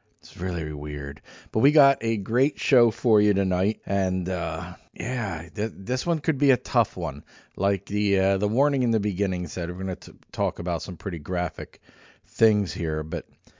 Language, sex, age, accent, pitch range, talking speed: English, male, 40-59, American, 90-110 Hz, 195 wpm